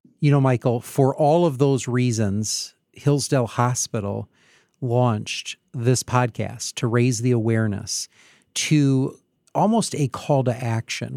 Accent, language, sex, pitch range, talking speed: American, English, male, 120-145 Hz, 125 wpm